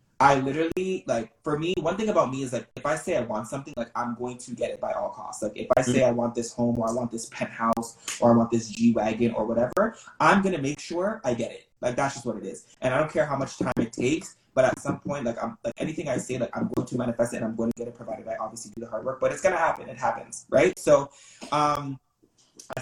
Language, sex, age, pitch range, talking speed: English, male, 20-39, 115-130 Hz, 285 wpm